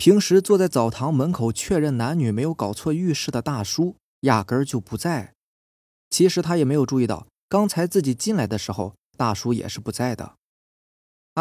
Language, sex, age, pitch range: Chinese, male, 20-39, 105-170 Hz